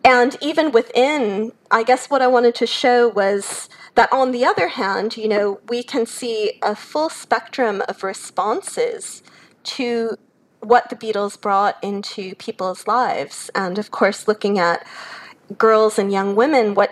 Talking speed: 155 wpm